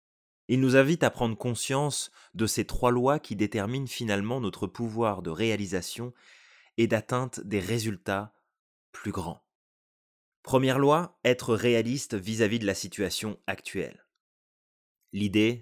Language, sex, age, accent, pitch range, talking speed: French, male, 20-39, French, 100-120 Hz, 125 wpm